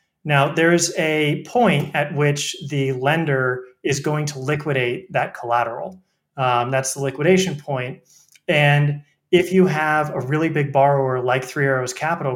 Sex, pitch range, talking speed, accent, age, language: male, 130-155 Hz, 155 wpm, American, 30-49, English